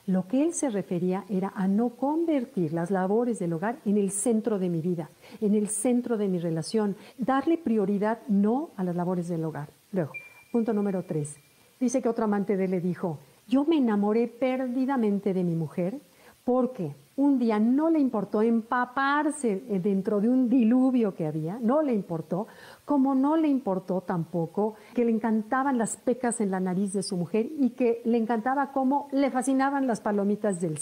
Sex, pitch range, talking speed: female, 190-255 Hz, 185 wpm